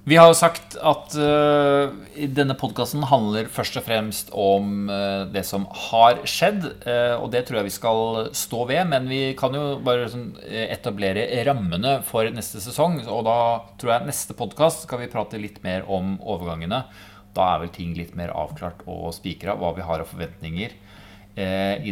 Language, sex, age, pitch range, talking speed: English, male, 30-49, 100-135 Hz, 180 wpm